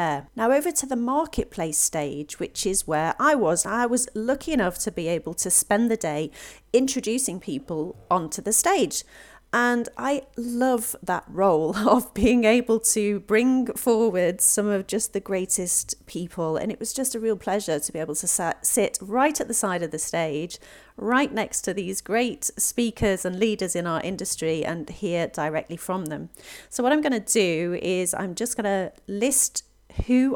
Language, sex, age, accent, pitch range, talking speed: English, female, 40-59, British, 170-230 Hz, 180 wpm